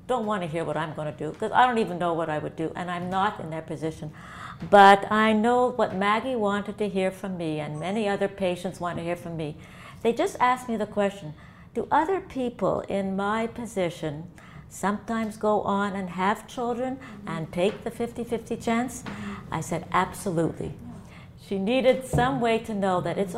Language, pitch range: English, 170-220 Hz